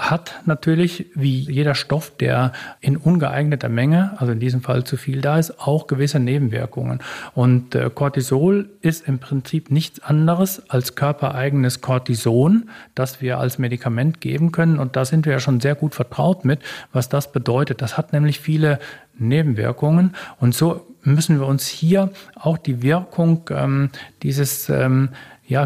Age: 40-59